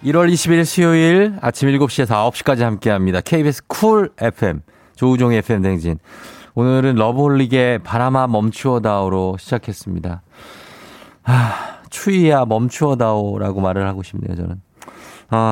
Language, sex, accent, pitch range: Korean, male, native, 100-145 Hz